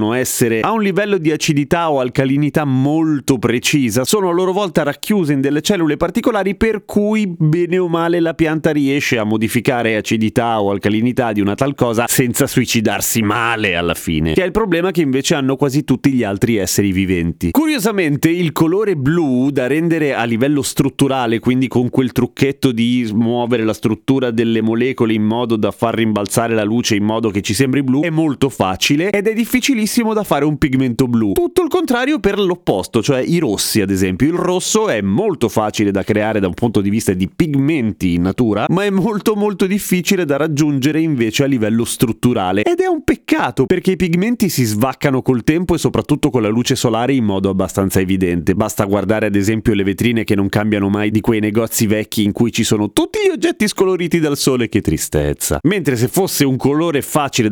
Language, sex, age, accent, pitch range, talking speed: Italian, male, 30-49, native, 110-165 Hz, 195 wpm